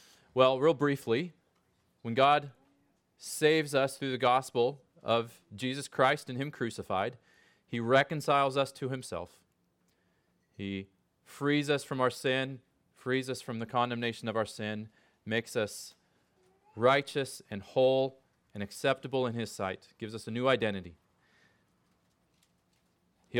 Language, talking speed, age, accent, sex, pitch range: English, 130 wpm, 30-49, American, male, 105-135 Hz